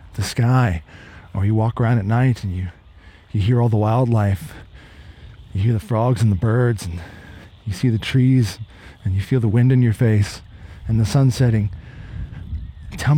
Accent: American